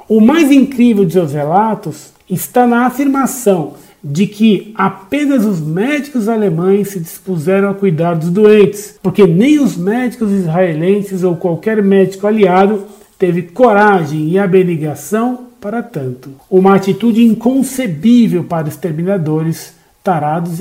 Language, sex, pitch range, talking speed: Portuguese, male, 170-215 Hz, 120 wpm